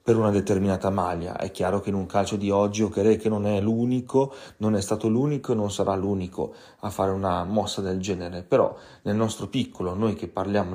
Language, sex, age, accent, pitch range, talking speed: Italian, male, 30-49, native, 95-105 Hz, 210 wpm